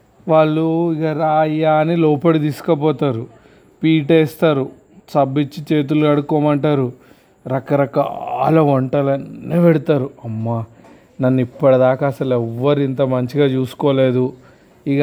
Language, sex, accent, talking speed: Telugu, male, native, 80 wpm